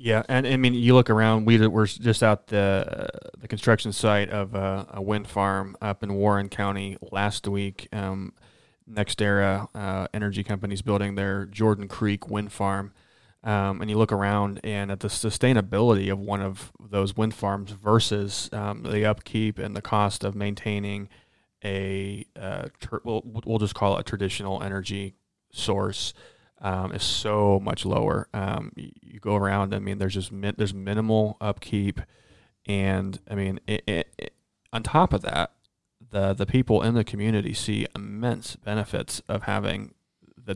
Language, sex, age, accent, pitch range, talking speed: English, male, 30-49, American, 100-105 Hz, 170 wpm